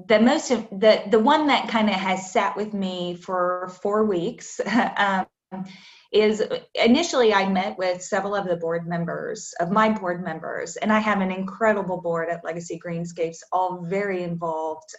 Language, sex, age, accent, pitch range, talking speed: English, female, 20-39, American, 175-220 Hz, 170 wpm